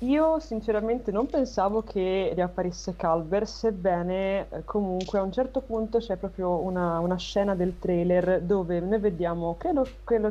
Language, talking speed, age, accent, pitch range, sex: Italian, 145 wpm, 20-39, native, 160-195 Hz, female